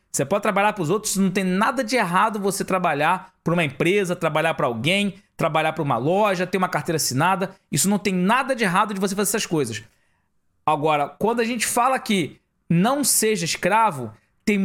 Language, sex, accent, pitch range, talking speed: Portuguese, male, Brazilian, 175-225 Hz, 195 wpm